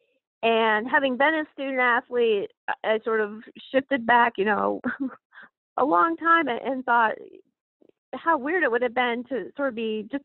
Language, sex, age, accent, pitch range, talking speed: English, female, 40-59, American, 195-255 Hz, 175 wpm